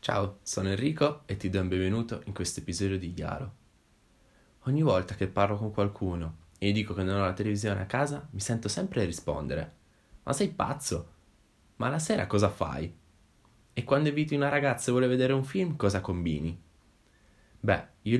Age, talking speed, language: 10-29, 180 wpm, Italian